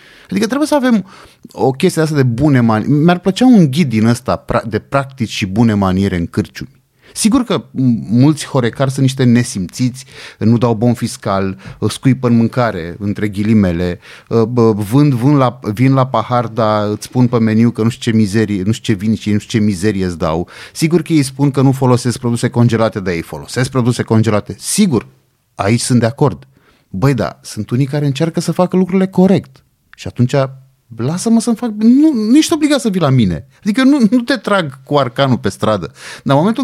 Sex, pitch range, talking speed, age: male, 115-185 Hz, 200 wpm, 30-49